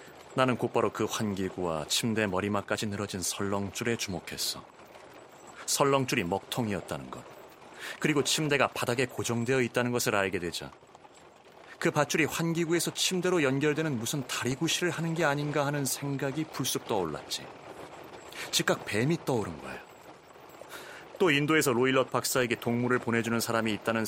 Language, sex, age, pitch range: Korean, male, 30-49, 95-135 Hz